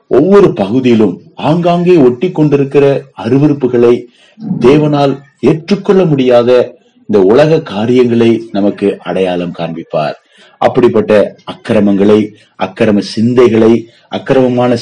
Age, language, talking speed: 30-49, Tamil, 75 wpm